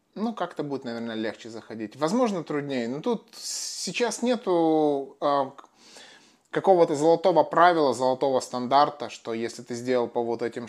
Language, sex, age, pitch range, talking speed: Russian, male, 20-39, 120-150 Hz, 140 wpm